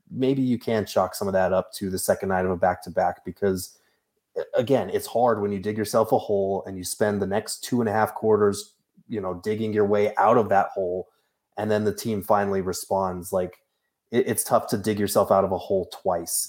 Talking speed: 225 wpm